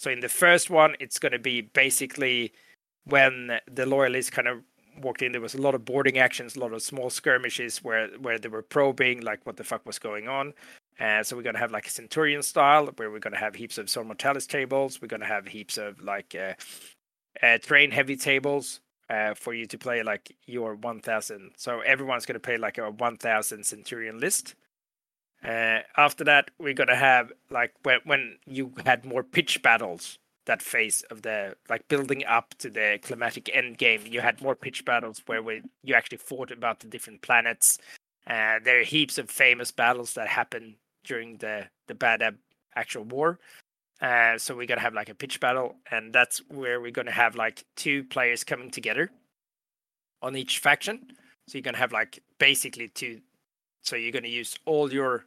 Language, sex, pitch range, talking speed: English, male, 115-140 Hz, 195 wpm